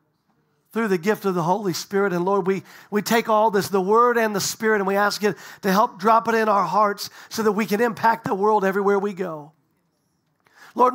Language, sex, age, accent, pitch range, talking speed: English, male, 50-69, American, 185-240 Hz, 225 wpm